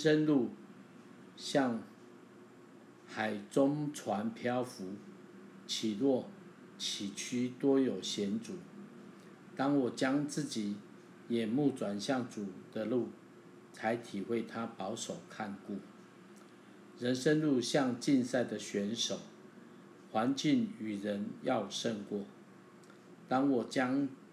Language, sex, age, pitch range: Chinese, male, 50-69, 105-135 Hz